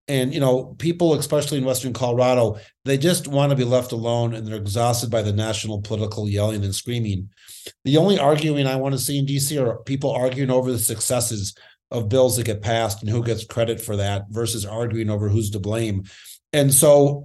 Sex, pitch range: male, 110-135 Hz